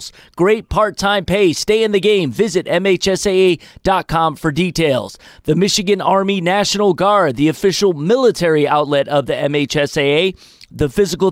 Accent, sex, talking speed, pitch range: American, male, 135 wpm, 150-200 Hz